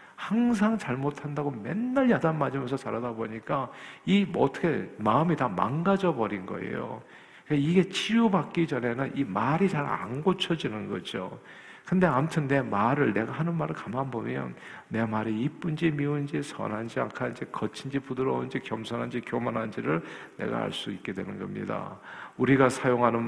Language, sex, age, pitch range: Korean, male, 50-69, 115-160 Hz